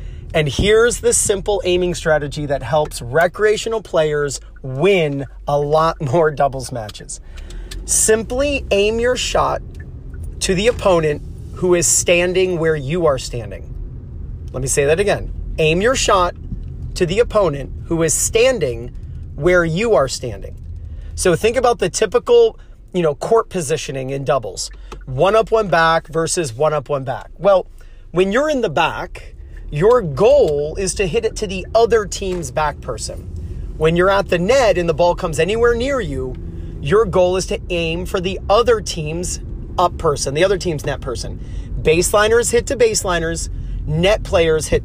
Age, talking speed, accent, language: 40-59, 160 wpm, American, English